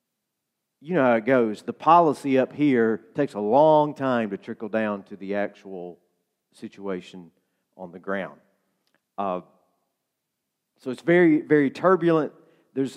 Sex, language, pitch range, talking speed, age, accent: male, English, 110-145 Hz, 140 wpm, 40-59, American